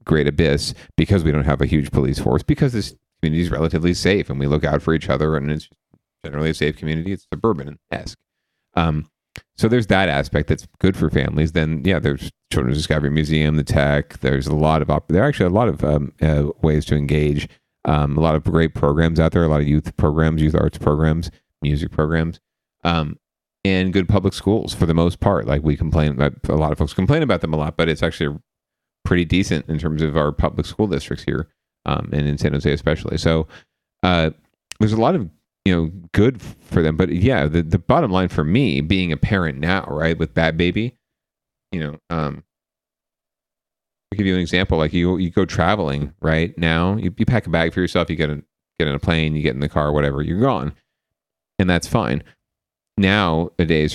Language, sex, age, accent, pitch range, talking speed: English, male, 40-59, American, 75-90 Hz, 210 wpm